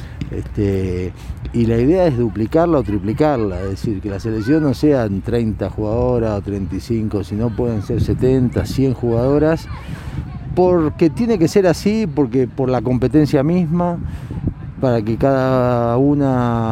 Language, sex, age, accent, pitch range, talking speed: Spanish, male, 40-59, Argentinian, 110-150 Hz, 140 wpm